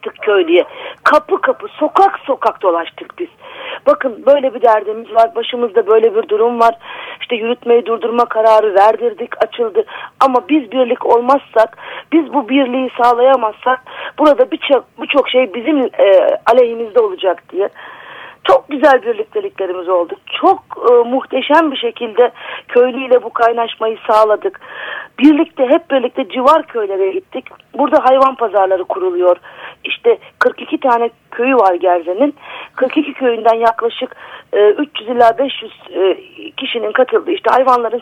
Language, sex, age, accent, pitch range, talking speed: Turkish, female, 40-59, native, 225-320 Hz, 125 wpm